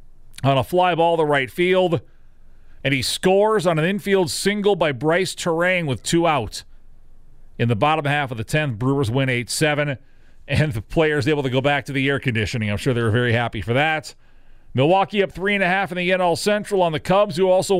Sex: male